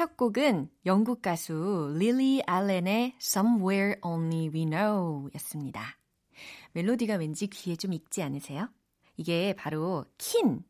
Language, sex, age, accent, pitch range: Korean, female, 30-49, native, 165-240 Hz